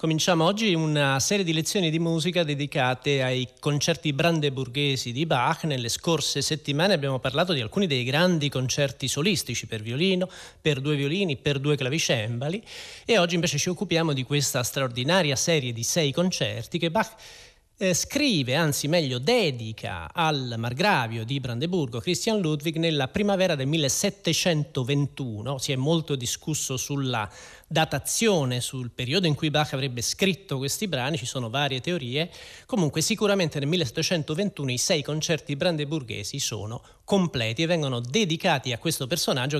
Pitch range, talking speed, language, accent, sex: 130-180 Hz, 145 wpm, Italian, native, male